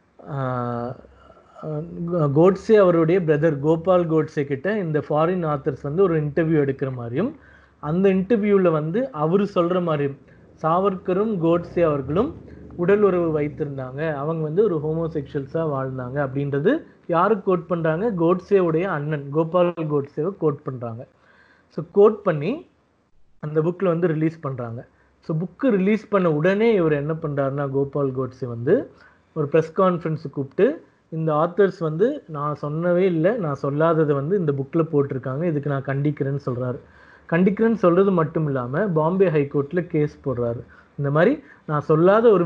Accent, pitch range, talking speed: native, 145-180 Hz, 135 wpm